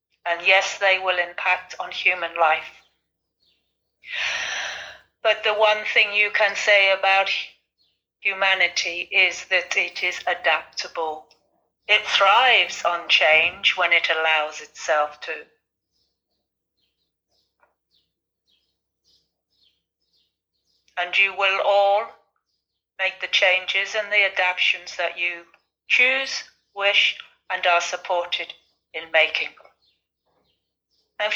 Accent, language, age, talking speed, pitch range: British, English, 40-59, 100 wpm, 165-200 Hz